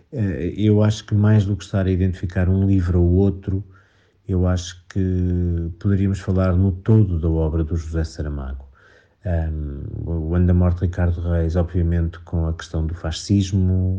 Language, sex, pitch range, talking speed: Portuguese, male, 85-95 Hz, 165 wpm